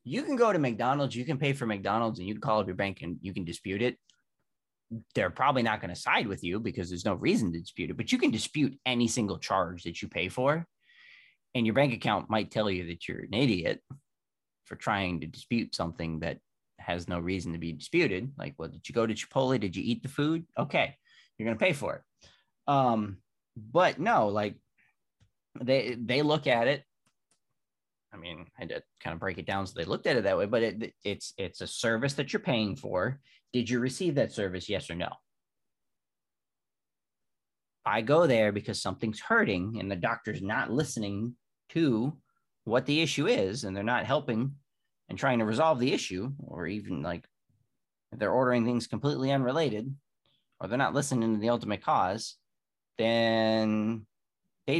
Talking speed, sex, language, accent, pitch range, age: 195 wpm, male, English, American, 100-135 Hz, 20-39